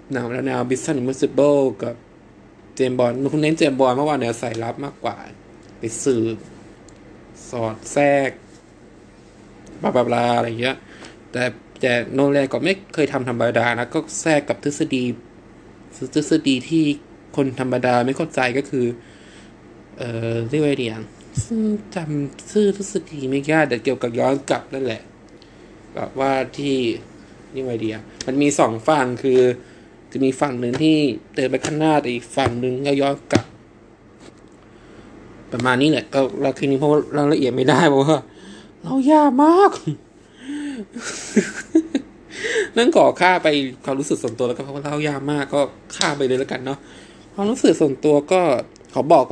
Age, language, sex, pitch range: 20-39, Thai, male, 125-155 Hz